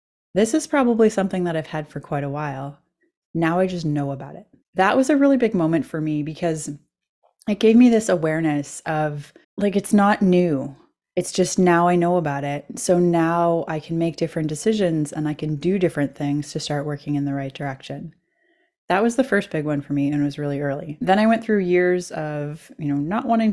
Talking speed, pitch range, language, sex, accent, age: 220 wpm, 150-190 Hz, English, female, American, 30-49